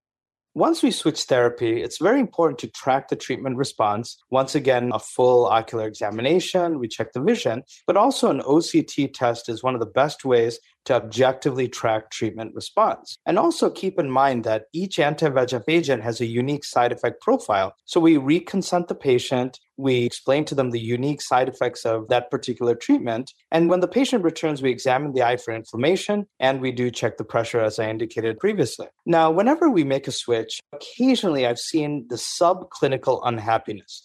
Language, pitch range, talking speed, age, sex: English, 120-165 Hz, 180 wpm, 30-49, male